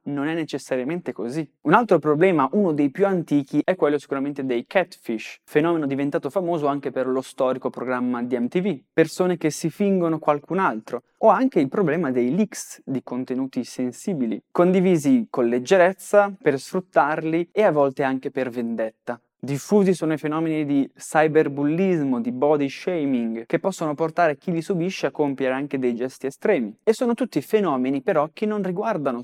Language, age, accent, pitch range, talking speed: Italian, 20-39, native, 130-180 Hz, 165 wpm